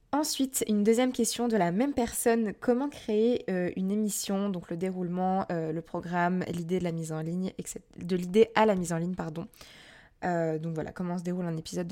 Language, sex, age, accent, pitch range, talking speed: French, female, 20-39, French, 170-210 Hz, 210 wpm